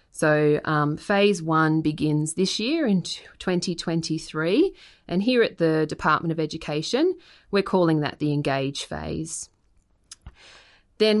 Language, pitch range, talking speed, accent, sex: English, 155-195 Hz, 125 wpm, Australian, female